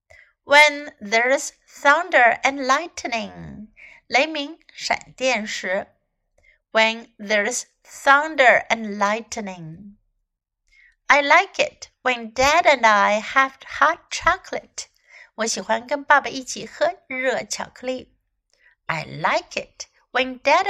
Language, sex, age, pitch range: Chinese, female, 60-79, 220-300 Hz